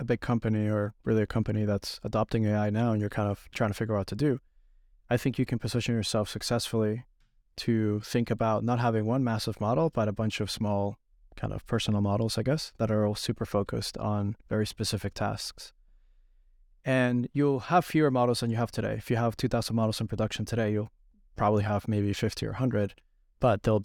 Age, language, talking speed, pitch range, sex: 20-39, English, 210 wpm, 105-120 Hz, male